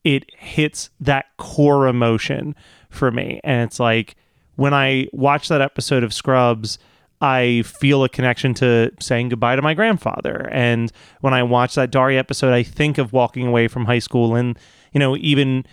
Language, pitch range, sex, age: English, 120-150 Hz, male, 30-49